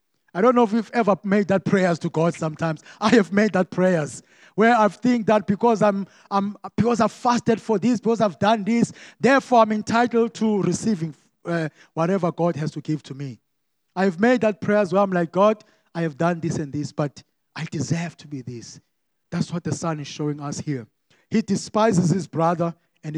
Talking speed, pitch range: 205 wpm, 145-185 Hz